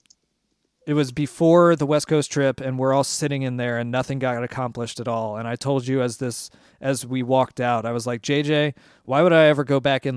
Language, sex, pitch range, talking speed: English, male, 125-145 Hz, 235 wpm